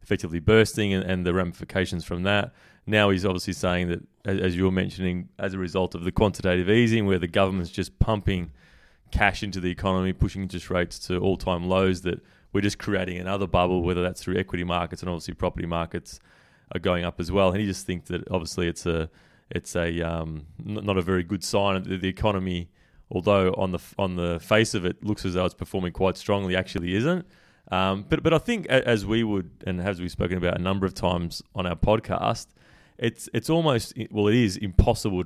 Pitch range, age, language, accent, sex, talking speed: 90-105 Hz, 20-39, English, Australian, male, 205 wpm